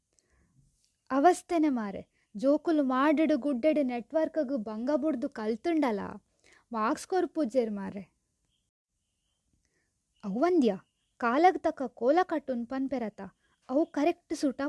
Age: 20-39